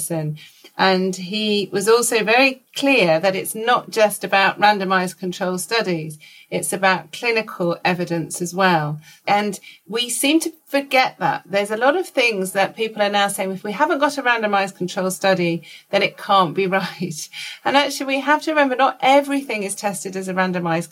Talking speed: 180 wpm